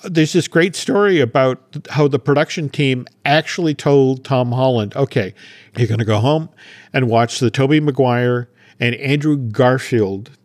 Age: 50-69